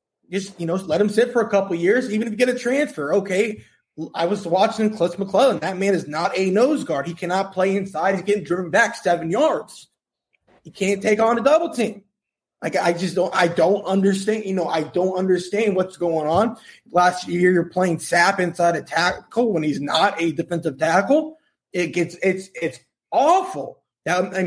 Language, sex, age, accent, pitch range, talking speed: English, male, 20-39, American, 155-195 Hz, 200 wpm